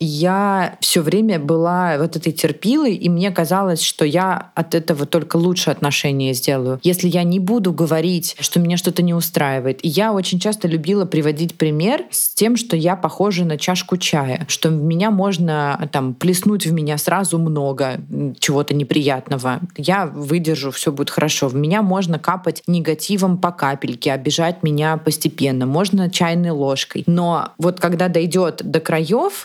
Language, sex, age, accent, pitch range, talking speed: Russian, female, 20-39, native, 155-185 Hz, 160 wpm